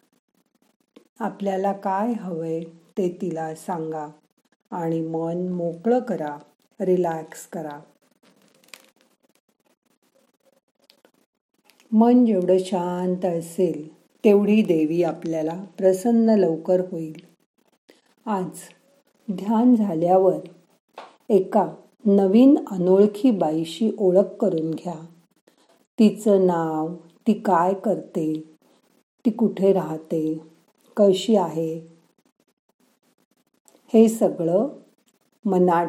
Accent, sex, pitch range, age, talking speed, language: native, female, 165-220 Hz, 50-69, 75 wpm, Marathi